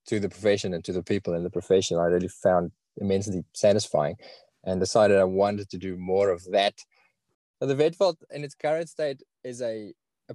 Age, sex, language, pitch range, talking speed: 20-39, male, English, 95-120 Hz, 205 wpm